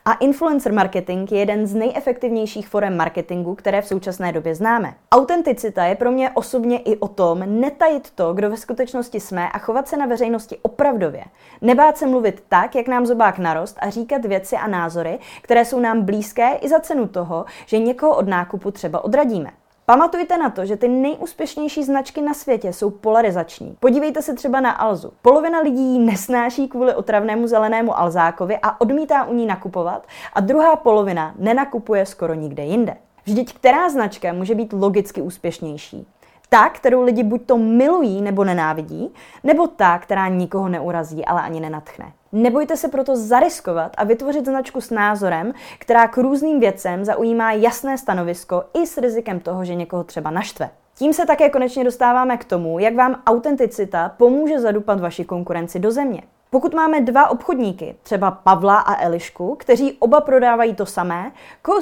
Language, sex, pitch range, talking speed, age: Czech, female, 185-260 Hz, 170 wpm, 20-39